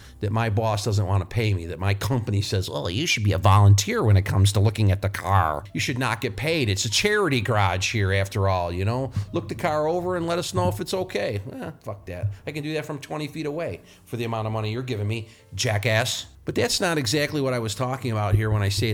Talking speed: 265 wpm